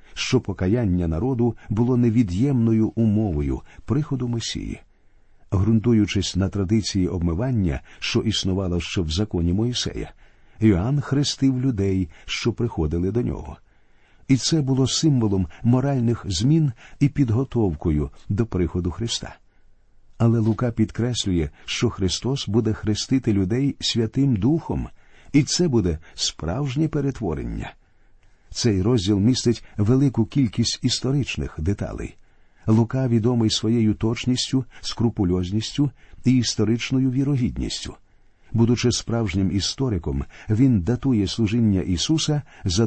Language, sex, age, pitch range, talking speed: Ukrainian, male, 50-69, 95-125 Hz, 100 wpm